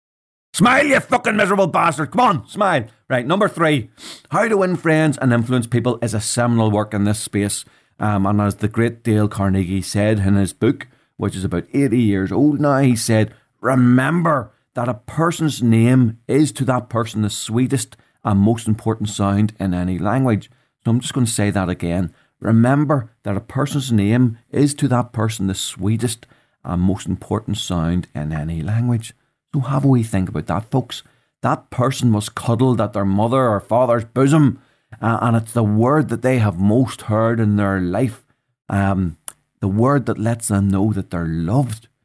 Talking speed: 185 wpm